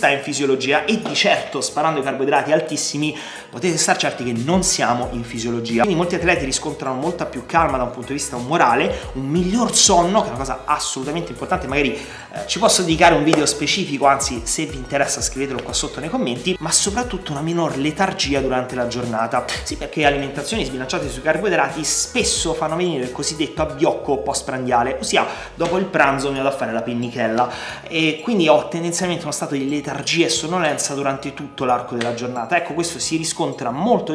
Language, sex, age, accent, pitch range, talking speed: Italian, male, 30-49, native, 130-170 Hz, 190 wpm